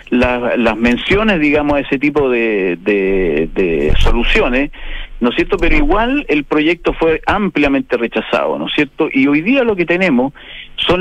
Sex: male